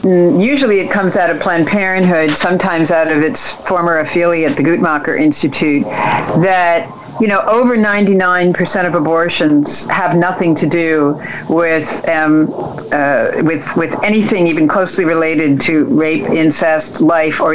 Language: English